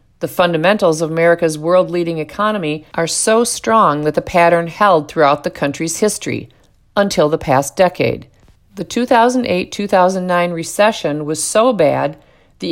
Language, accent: English, American